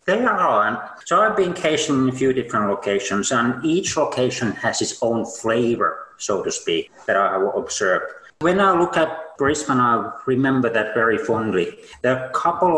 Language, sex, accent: English, male, Finnish